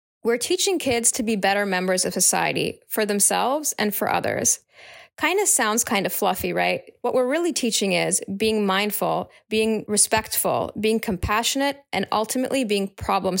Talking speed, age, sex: 160 wpm, 20-39, female